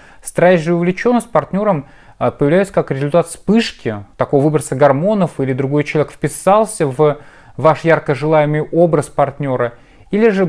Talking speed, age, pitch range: 135 wpm, 20-39, 140-175 Hz